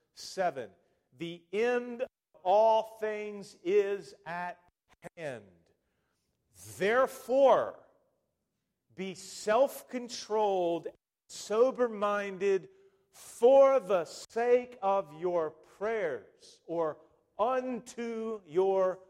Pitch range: 180-260 Hz